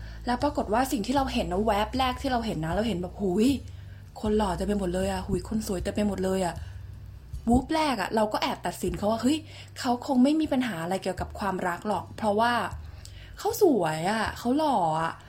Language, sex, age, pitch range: Thai, female, 20-39, 175-230 Hz